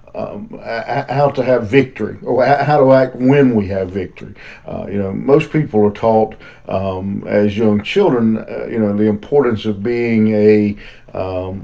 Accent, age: American, 50-69